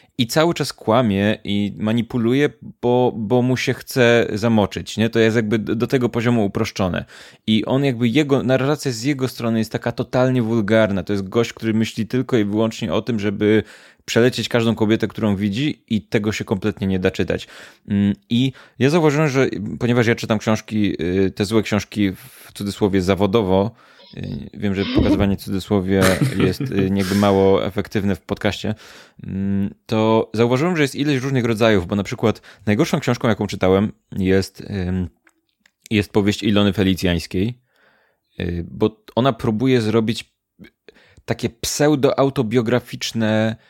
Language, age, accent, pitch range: Polish, 20-39, native, 105-130 Hz